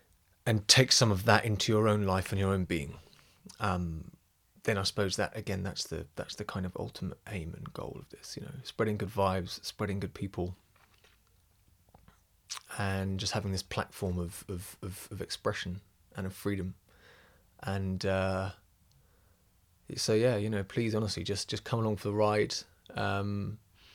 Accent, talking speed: British, 170 wpm